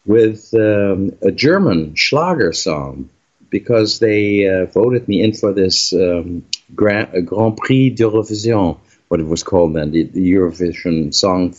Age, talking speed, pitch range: 50-69, 140 wpm, 85-105 Hz